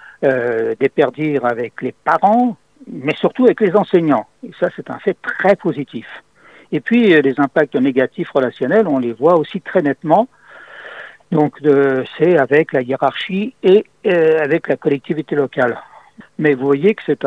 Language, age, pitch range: French, 60-79, 140-200 Hz